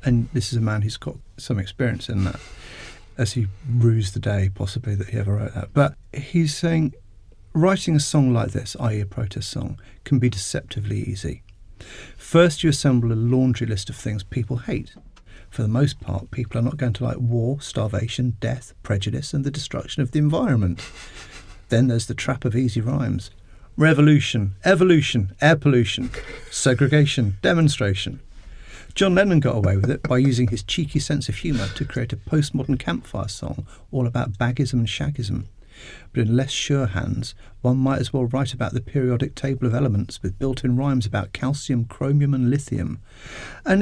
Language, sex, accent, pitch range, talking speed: English, male, British, 105-135 Hz, 180 wpm